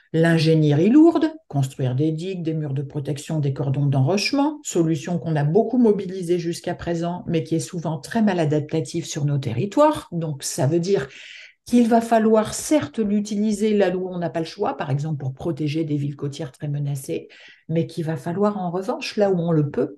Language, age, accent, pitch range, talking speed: French, 60-79, French, 150-210 Hz, 195 wpm